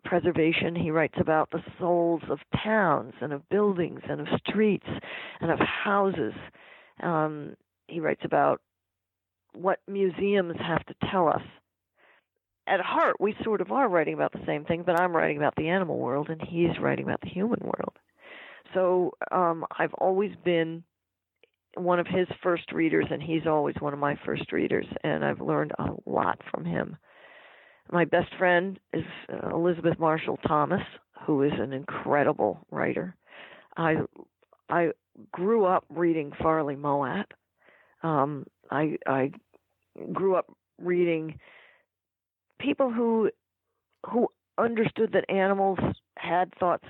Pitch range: 155-185 Hz